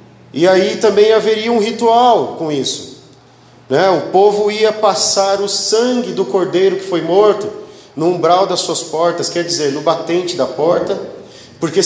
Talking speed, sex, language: 160 wpm, male, Portuguese